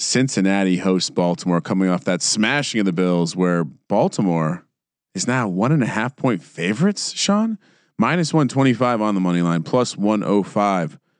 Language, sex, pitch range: English, male, 95-140 Hz